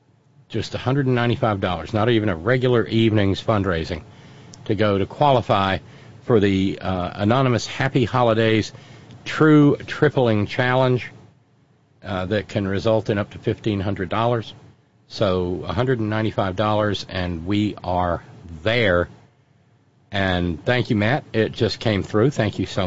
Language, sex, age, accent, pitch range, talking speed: English, male, 50-69, American, 105-135 Hz, 120 wpm